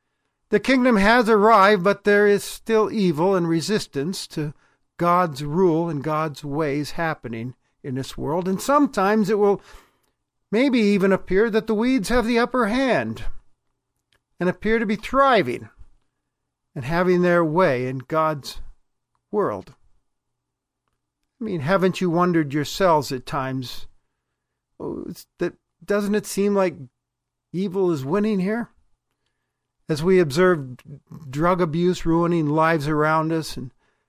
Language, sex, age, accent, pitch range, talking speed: English, male, 50-69, American, 145-195 Hz, 130 wpm